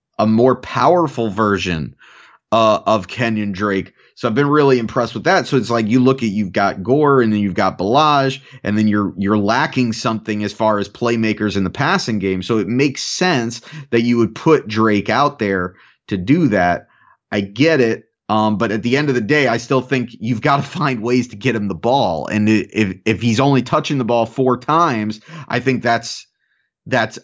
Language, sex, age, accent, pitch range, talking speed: English, male, 30-49, American, 105-135 Hz, 210 wpm